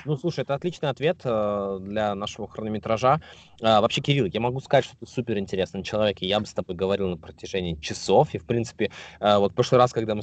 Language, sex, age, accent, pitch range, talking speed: Russian, male, 20-39, native, 105-135 Hz, 215 wpm